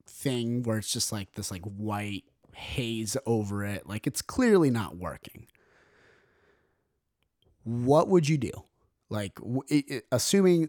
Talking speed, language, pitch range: 140 wpm, English, 110-155 Hz